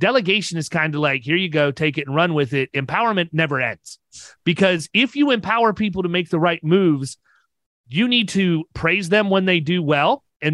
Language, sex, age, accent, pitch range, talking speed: English, male, 30-49, American, 165-220 Hz, 210 wpm